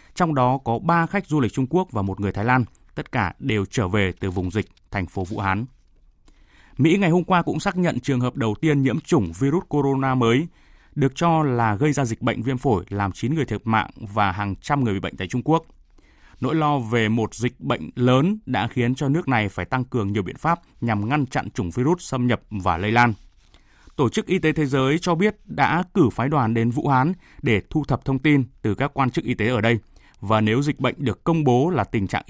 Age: 20-39